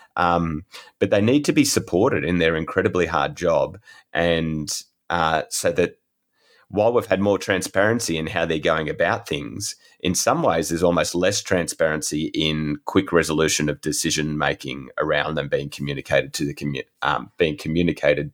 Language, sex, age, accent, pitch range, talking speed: English, male, 30-49, Australian, 75-95 Hz, 160 wpm